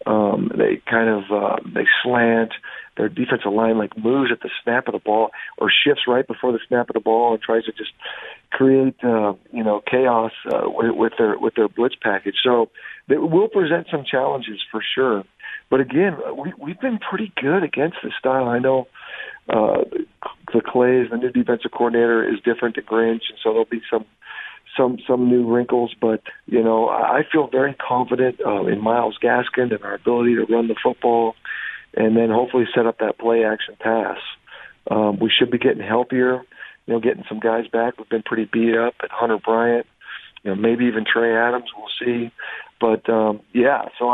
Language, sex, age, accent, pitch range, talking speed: English, male, 50-69, American, 115-125 Hz, 195 wpm